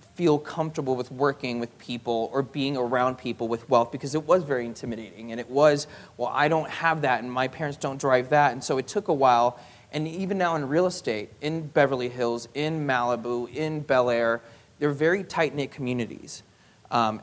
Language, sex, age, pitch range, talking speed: English, male, 20-39, 120-145 Hz, 195 wpm